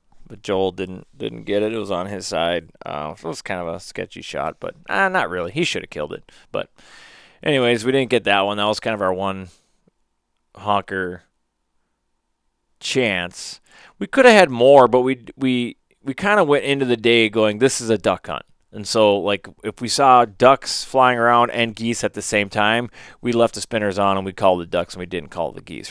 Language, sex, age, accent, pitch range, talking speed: English, male, 30-49, American, 95-125 Hz, 225 wpm